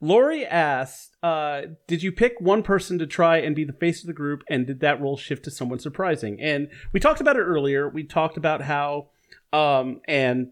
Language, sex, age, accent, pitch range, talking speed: English, male, 30-49, American, 135-190 Hz, 210 wpm